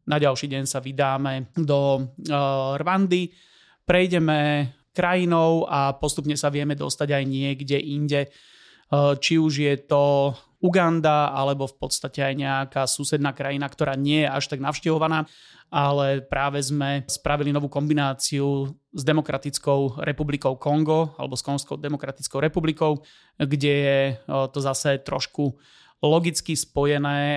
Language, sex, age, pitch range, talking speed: Slovak, male, 30-49, 135-150 Hz, 125 wpm